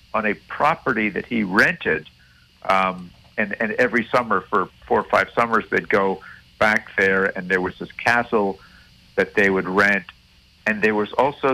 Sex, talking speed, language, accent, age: male, 170 wpm, English, American, 50-69